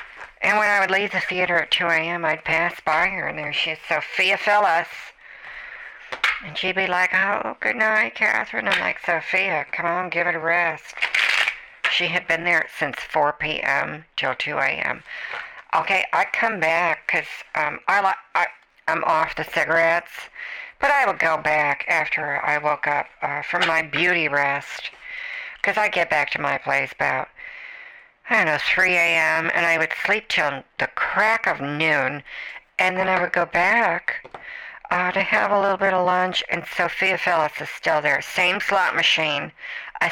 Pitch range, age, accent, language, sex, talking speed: 165-205 Hz, 60-79, American, English, female, 175 wpm